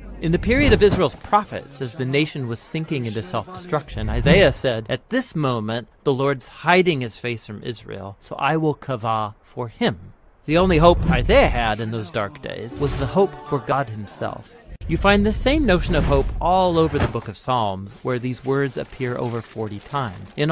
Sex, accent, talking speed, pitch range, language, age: male, American, 195 wpm, 120-175 Hz, English, 40-59